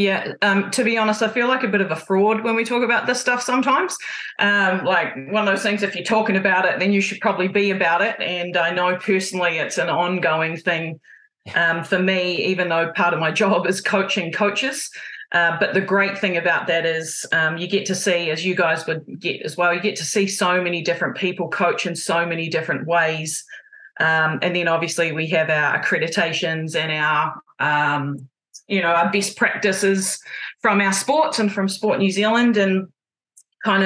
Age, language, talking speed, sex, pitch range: 30-49, English, 210 wpm, female, 165-200 Hz